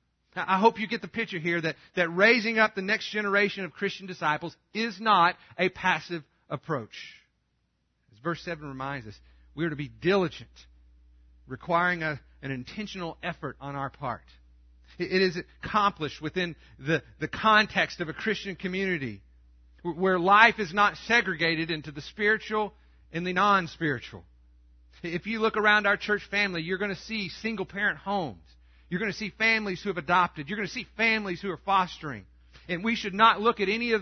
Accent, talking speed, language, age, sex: American, 175 wpm, English, 40-59, male